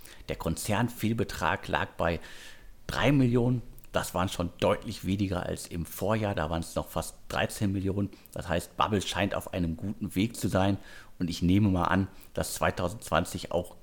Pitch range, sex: 90-115 Hz, male